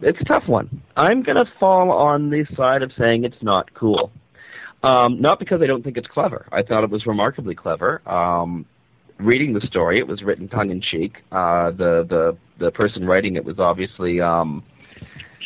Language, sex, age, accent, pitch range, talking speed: English, male, 40-59, American, 95-125 Hz, 195 wpm